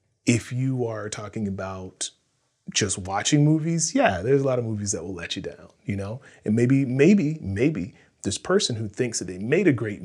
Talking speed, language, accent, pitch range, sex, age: 205 wpm, English, American, 100-125 Hz, male, 30-49